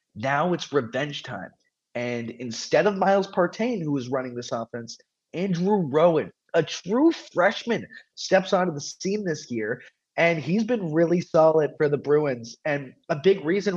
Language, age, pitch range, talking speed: English, 20-39, 145-195 Hz, 160 wpm